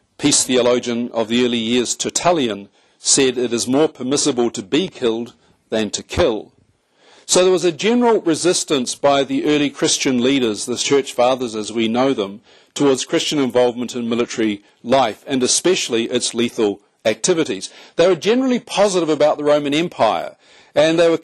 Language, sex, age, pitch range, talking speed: English, male, 50-69, 120-155 Hz, 165 wpm